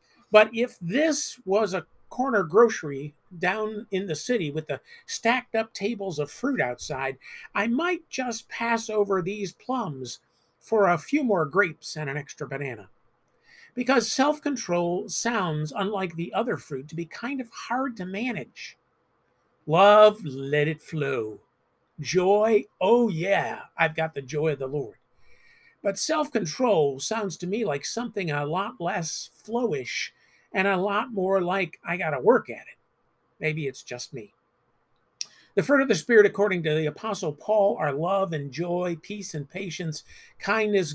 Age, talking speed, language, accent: 50-69, 155 wpm, English, American